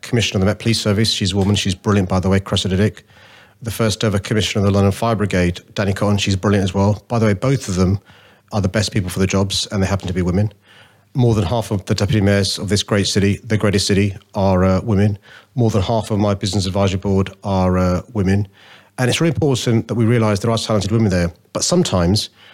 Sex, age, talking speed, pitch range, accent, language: male, 40-59, 245 wpm, 100-115 Hz, British, English